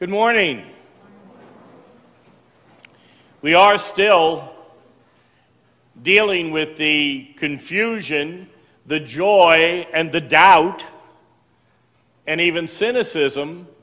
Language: English